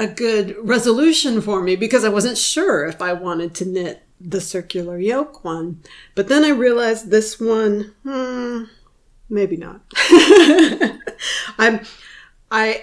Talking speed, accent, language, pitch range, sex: 130 wpm, American, English, 185-240 Hz, female